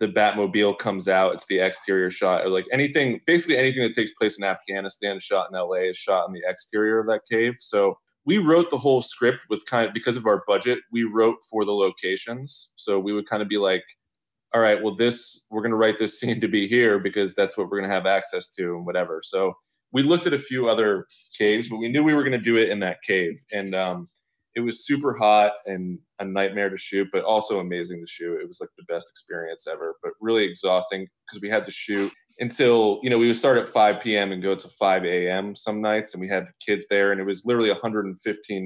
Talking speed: 240 wpm